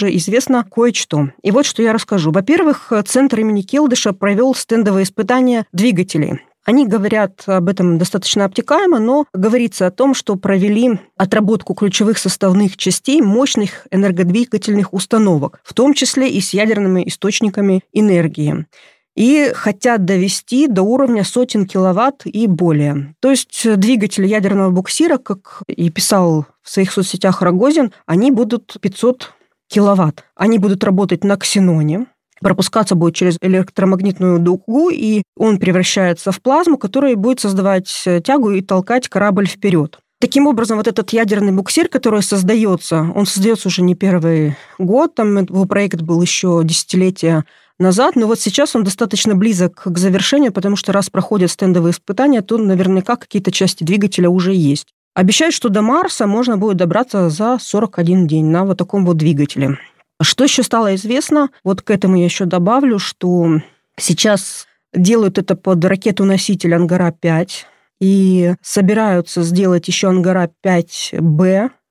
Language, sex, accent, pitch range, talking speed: Russian, female, native, 185-225 Hz, 140 wpm